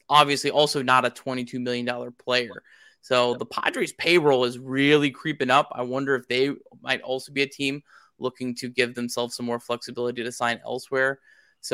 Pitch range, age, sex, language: 125-140 Hz, 20-39, male, English